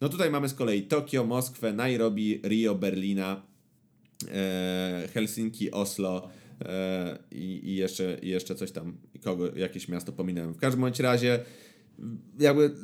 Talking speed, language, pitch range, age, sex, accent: 125 wpm, Polish, 100-125 Hz, 30-49, male, native